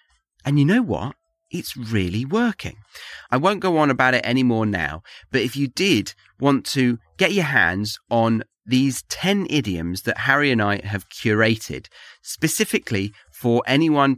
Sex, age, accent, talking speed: male, 30-49, British, 155 wpm